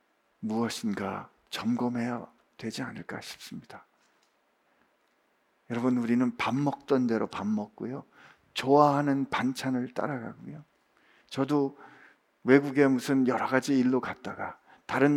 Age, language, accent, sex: 50-69, Korean, native, male